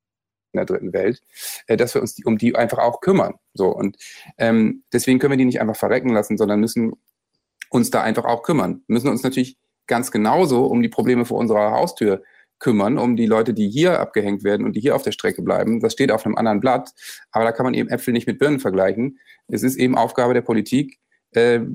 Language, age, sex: German, 40-59, male